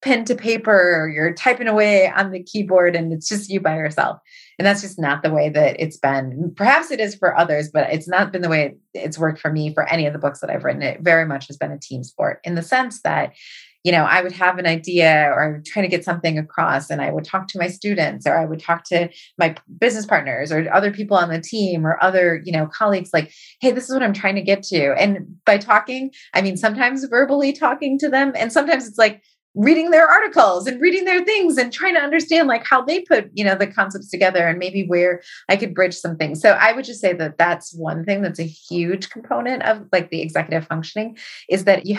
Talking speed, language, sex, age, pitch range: 245 wpm, English, female, 30-49, 165-220 Hz